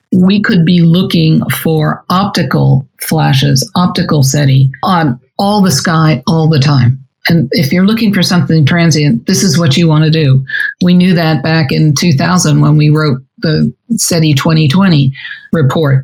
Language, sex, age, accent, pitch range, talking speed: English, male, 50-69, American, 145-175 Hz, 160 wpm